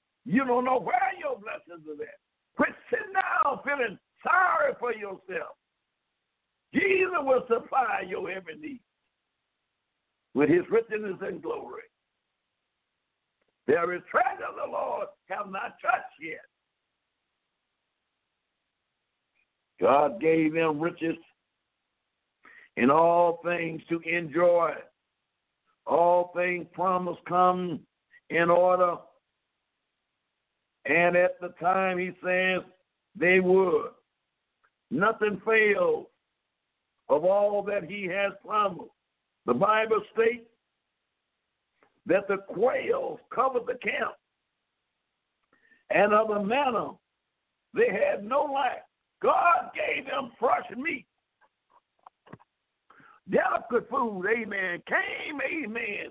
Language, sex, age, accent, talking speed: English, male, 60-79, American, 100 wpm